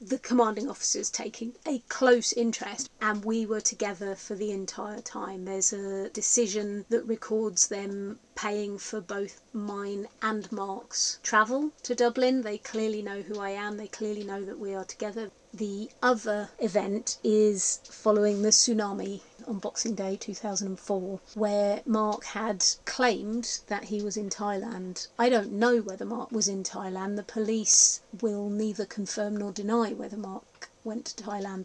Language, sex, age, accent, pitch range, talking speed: English, female, 30-49, British, 205-230 Hz, 155 wpm